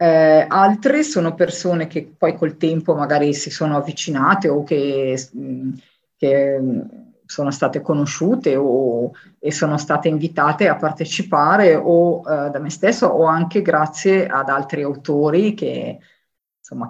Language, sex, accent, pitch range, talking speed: Italian, female, native, 155-195 Hz, 135 wpm